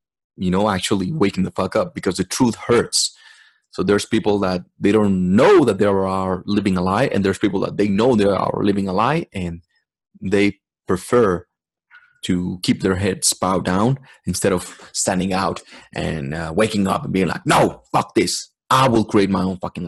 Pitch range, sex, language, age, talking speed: 95-115 Hz, male, English, 30-49, 195 wpm